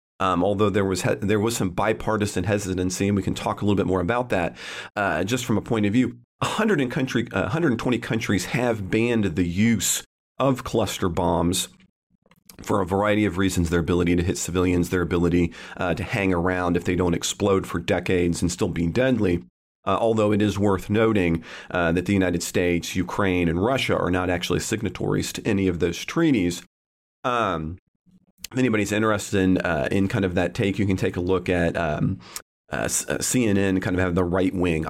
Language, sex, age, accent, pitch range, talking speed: English, male, 40-59, American, 90-110 Hz, 200 wpm